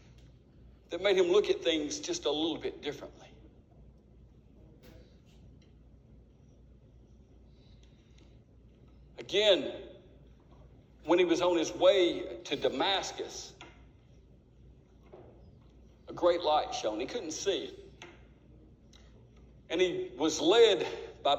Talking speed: 95 wpm